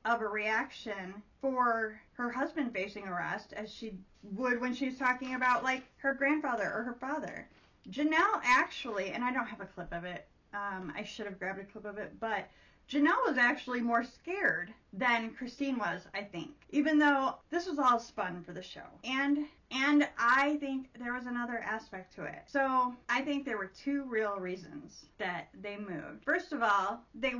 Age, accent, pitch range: 30-49, American, 205-255 Hz